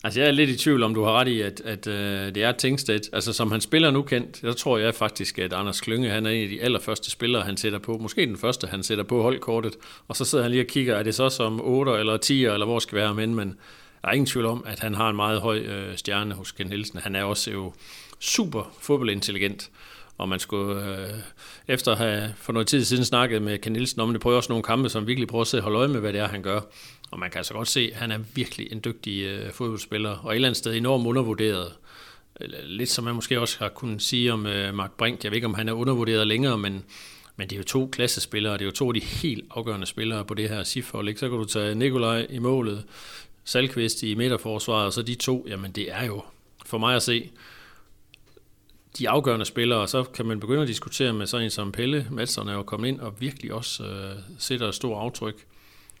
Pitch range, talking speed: 105-120 Hz, 250 wpm